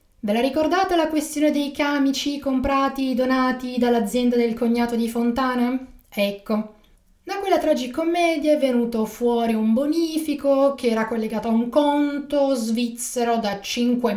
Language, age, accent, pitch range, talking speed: Italian, 30-49, native, 215-290 Hz, 135 wpm